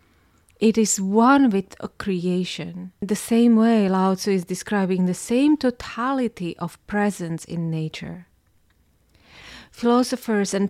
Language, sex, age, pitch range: English, female, 30-49, 175-230 Hz